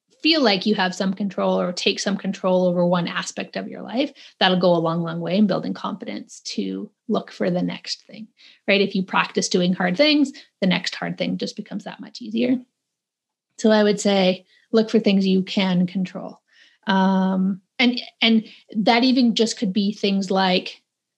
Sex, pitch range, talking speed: female, 195-240 Hz, 190 wpm